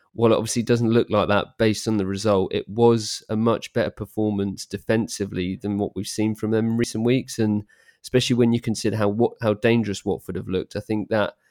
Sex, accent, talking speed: male, British, 225 wpm